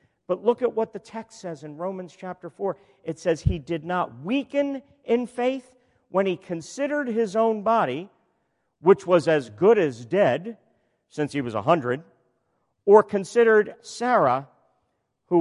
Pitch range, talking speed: 135-200 Hz, 150 wpm